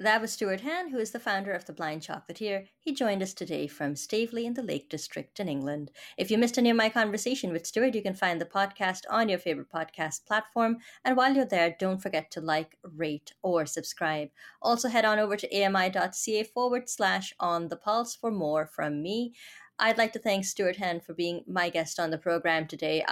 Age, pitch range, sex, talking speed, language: 30-49, 170-220 Hz, female, 215 wpm, English